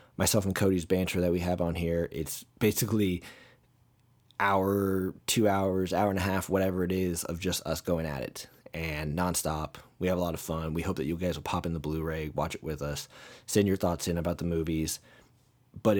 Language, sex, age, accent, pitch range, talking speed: English, male, 20-39, American, 85-100 Hz, 215 wpm